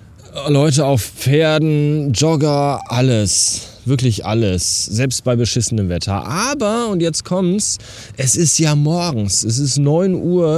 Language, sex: German, male